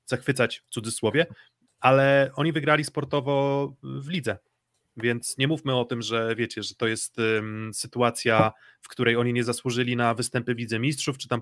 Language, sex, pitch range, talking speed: Polish, male, 115-145 Hz, 165 wpm